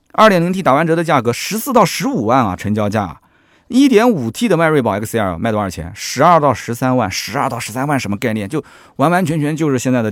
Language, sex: Chinese, male